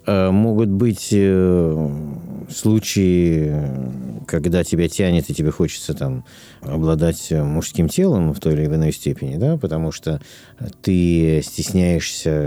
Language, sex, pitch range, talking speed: Russian, male, 75-95 Hz, 110 wpm